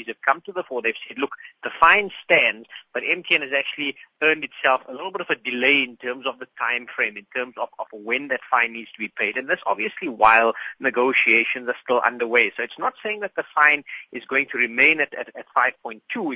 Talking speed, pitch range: 230 wpm, 120-165 Hz